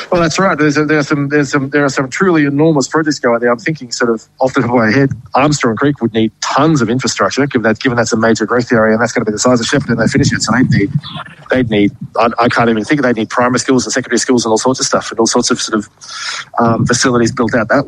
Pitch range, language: 120-140 Hz, English